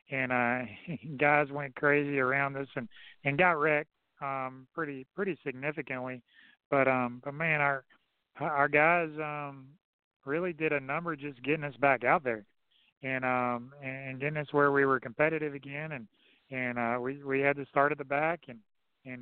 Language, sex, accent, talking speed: English, male, American, 175 wpm